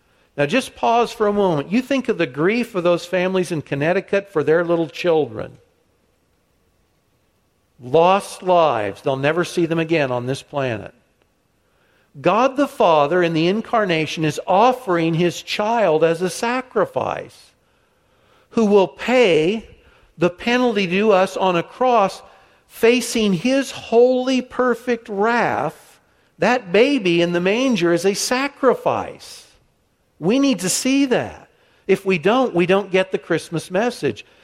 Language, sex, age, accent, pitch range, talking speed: English, male, 60-79, American, 145-205 Hz, 140 wpm